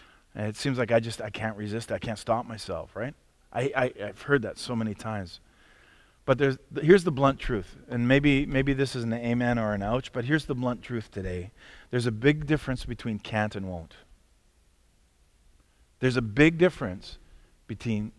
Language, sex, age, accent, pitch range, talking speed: English, male, 40-59, American, 110-150 Hz, 190 wpm